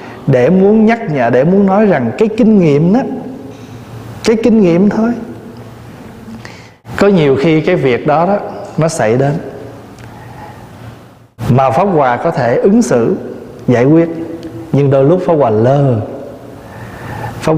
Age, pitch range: 20-39, 120-155 Hz